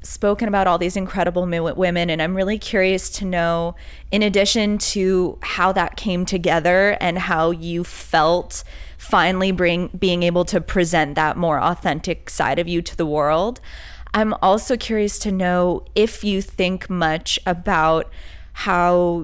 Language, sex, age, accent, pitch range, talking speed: English, female, 20-39, American, 170-190 Hz, 155 wpm